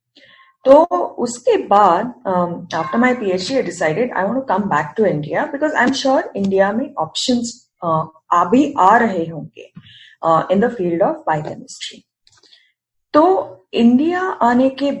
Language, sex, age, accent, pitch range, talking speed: Hindi, female, 30-49, native, 180-255 Hz, 150 wpm